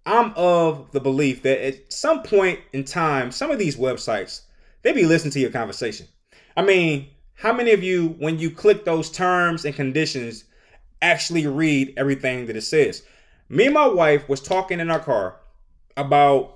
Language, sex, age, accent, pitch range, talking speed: English, male, 20-39, American, 145-210 Hz, 180 wpm